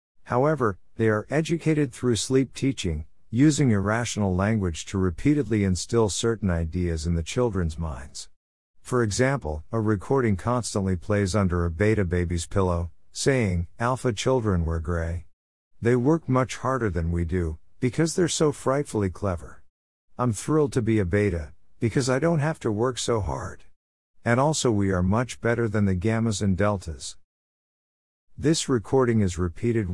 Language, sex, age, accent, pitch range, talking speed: Spanish, male, 50-69, American, 85-120 Hz, 150 wpm